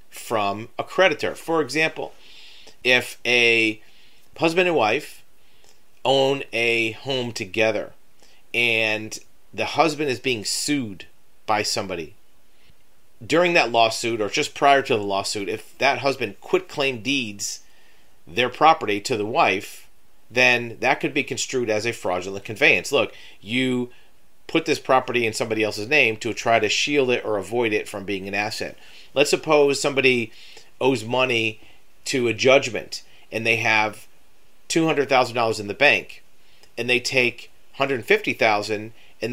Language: English